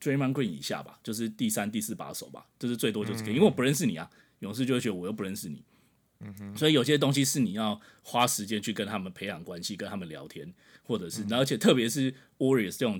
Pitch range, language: 105-135 Hz, Chinese